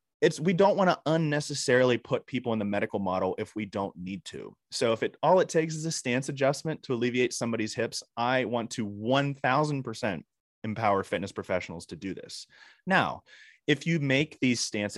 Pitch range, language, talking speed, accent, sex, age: 105-145 Hz, English, 185 wpm, American, male, 30-49